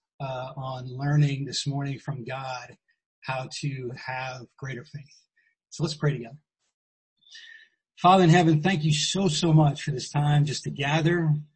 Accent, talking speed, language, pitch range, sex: American, 155 wpm, English, 140-160 Hz, male